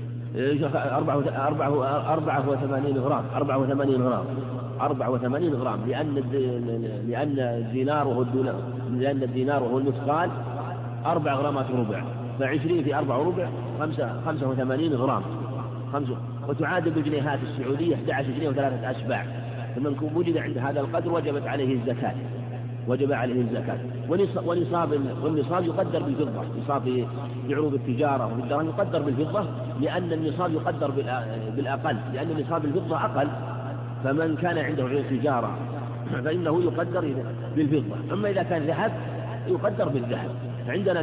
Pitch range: 125-150 Hz